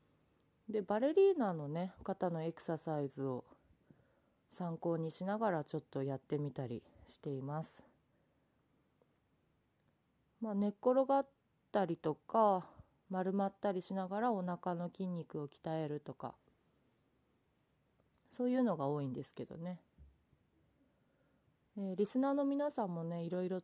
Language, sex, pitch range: Japanese, female, 150-210 Hz